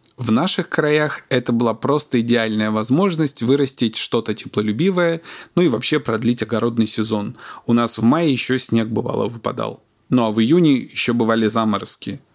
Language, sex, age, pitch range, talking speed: Russian, male, 20-39, 115-145 Hz, 155 wpm